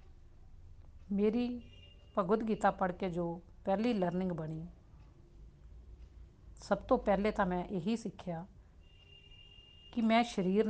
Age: 50-69